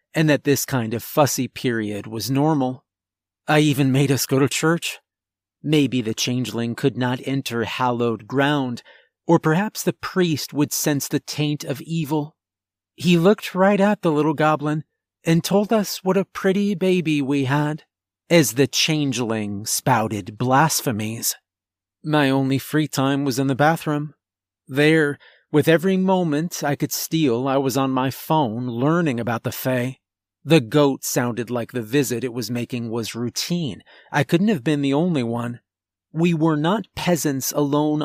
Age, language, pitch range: 40-59, English, 120-155 Hz